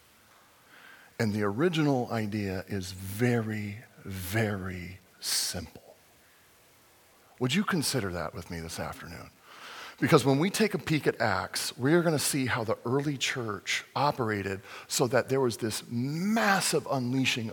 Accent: American